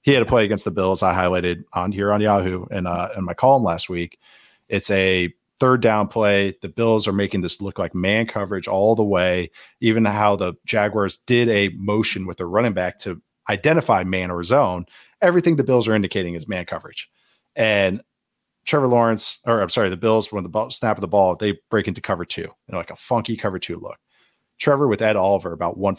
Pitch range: 90-115 Hz